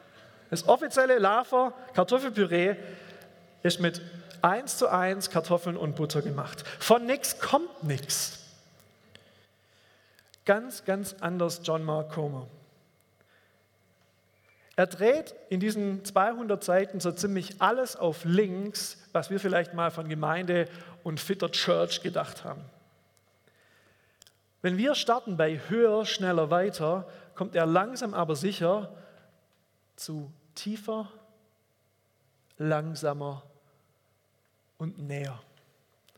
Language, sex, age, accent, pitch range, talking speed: German, male, 40-59, German, 145-200 Hz, 105 wpm